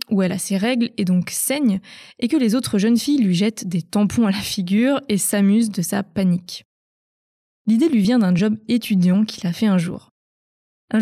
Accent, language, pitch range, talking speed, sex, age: French, French, 195-245 Hz, 205 wpm, female, 20-39